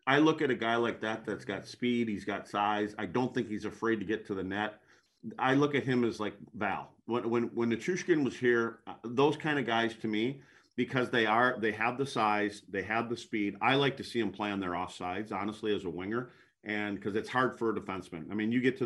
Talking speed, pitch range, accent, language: 250 wpm, 105-125 Hz, American, English